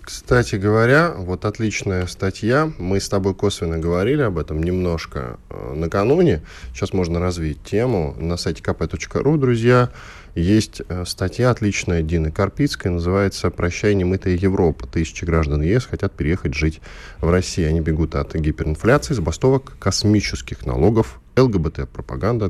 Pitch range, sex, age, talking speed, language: 80-105 Hz, male, 10-29, 125 wpm, Russian